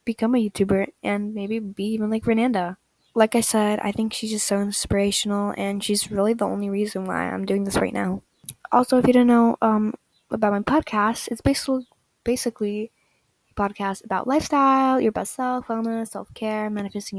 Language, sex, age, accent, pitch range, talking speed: English, female, 10-29, American, 205-255 Hz, 185 wpm